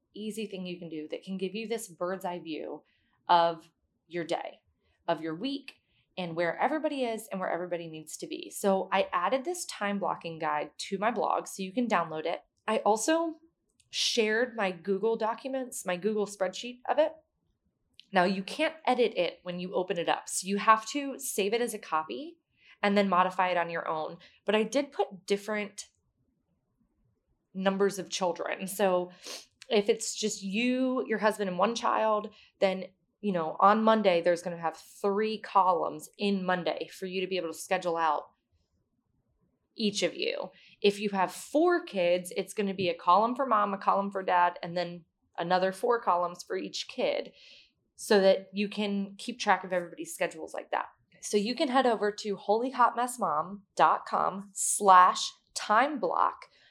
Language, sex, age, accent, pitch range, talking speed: English, female, 20-39, American, 180-220 Hz, 175 wpm